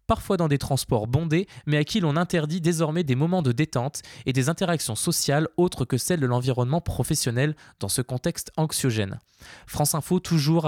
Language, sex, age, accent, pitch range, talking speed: French, male, 20-39, French, 135-170 Hz, 180 wpm